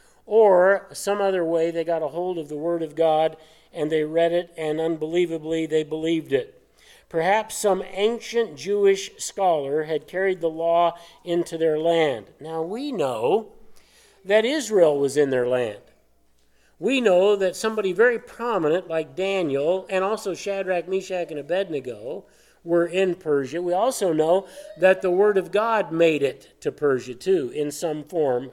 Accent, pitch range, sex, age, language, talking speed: American, 155-200 Hz, male, 50-69, English, 160 wpm